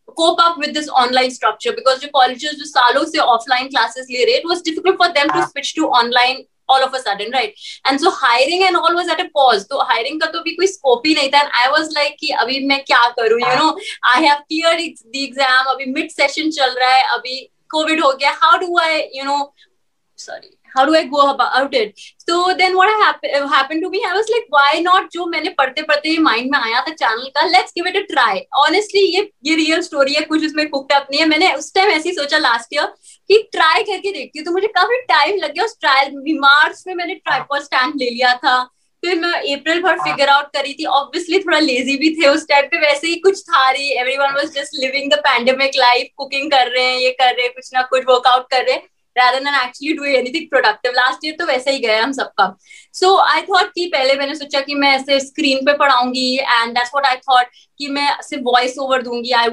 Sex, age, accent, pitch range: female, 20-39, native, 260-335 Hz